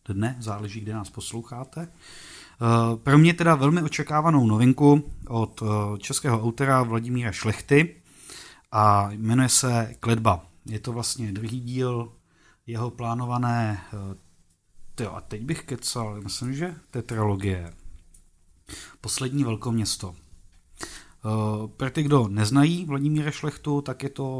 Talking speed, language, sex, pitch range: 115 wpm, Czech, male, 110-135 Hz